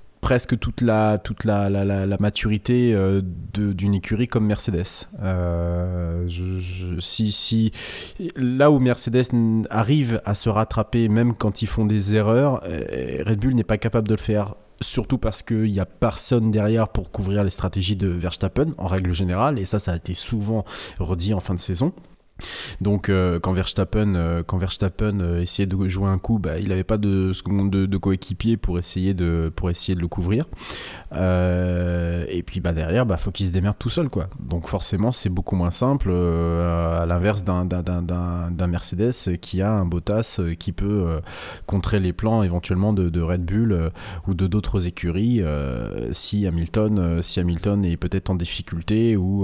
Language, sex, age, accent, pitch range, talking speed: French, male, 30-49, French, 90-110 Hz, 175 wpm